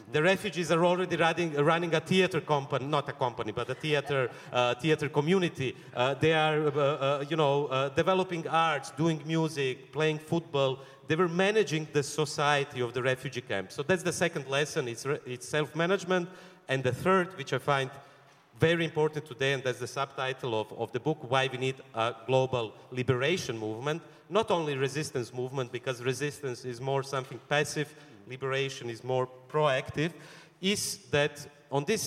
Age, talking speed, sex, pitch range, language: 40-59, 170 wpm, male, 130-160 Hz, English